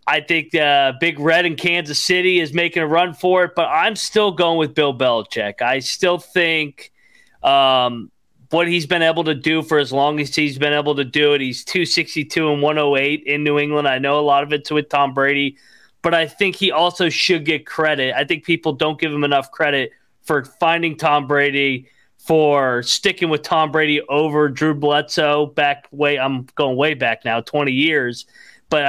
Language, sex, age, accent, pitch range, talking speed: English, male, 30-49, American, 140-170 Hz, 195 wpm